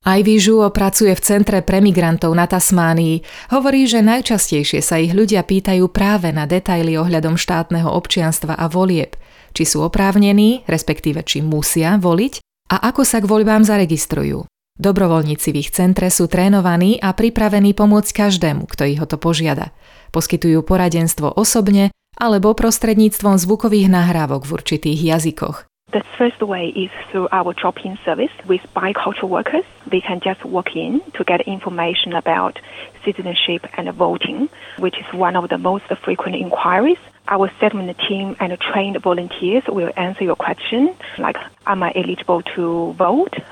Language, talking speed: Slovak, 150 wpm